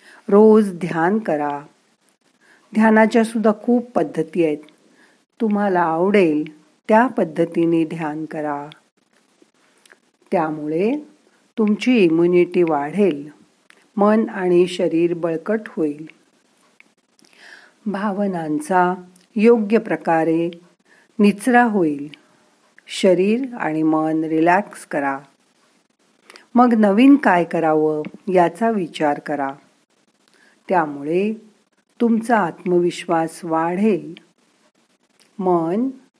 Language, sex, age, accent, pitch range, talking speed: Marathi, female, 50-69, native, 160-220 Hz, 75 wpm